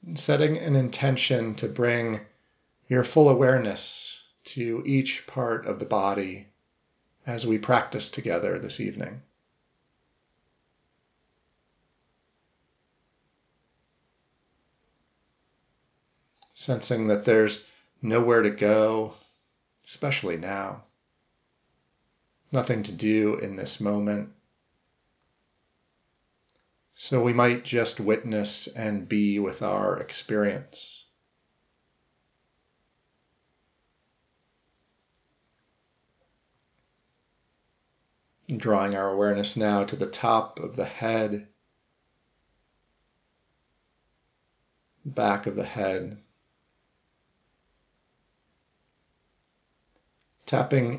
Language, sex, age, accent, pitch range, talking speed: English, male, 40-59, American, 100-125 Hz, 70 wpm